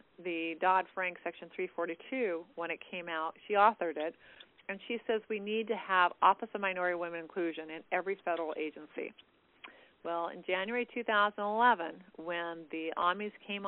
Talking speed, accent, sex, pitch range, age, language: 155 wpm, American, female, 175-235 Hz, 40-59, English